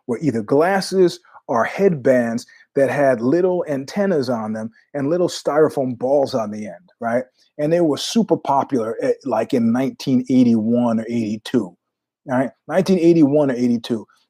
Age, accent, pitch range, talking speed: 30-49, American, 125-170 Hz, 145 wpm